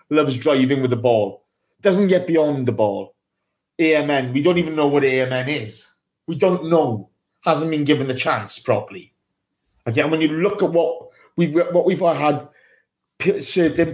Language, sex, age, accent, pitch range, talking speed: English, male, 30-49, British, 135-175 Hz, 170 wpm